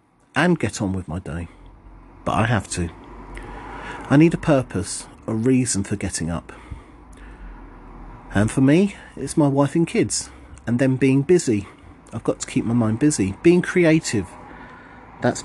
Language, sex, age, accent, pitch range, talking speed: English, male, 40-59, British, 100-135 Hz, 160 wpm